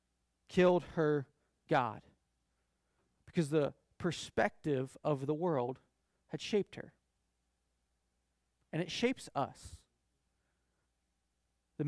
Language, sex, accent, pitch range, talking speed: English, male, American, 160-215 Hz, 85 wpm